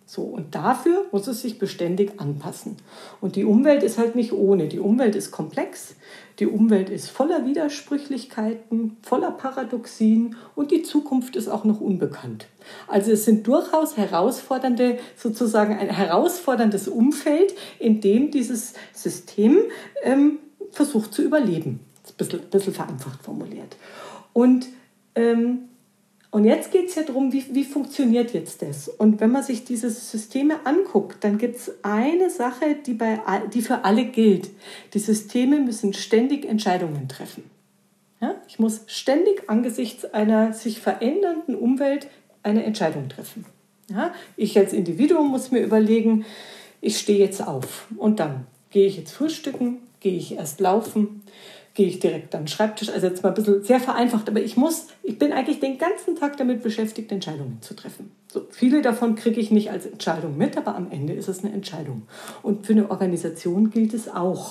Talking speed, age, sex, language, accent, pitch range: 160 wpm, 50-69, female, German, German, 200-255 Hz